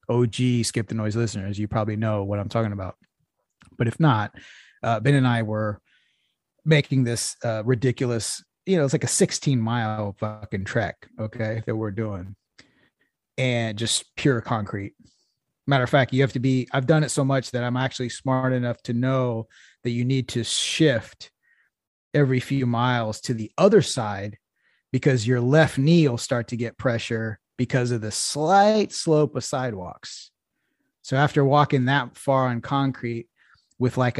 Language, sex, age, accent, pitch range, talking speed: English, male, 30-49, American, 110-135 Hz, 170 wpm